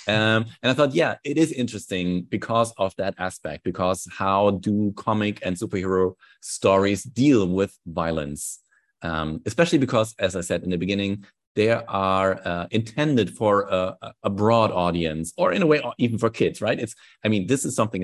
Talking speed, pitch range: 180 wpm, 90-110 Hz